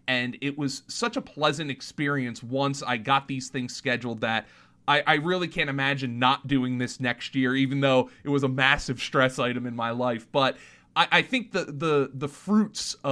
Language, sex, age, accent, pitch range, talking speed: English, male, 30-49, American, 120-145 Hz, 195 wpm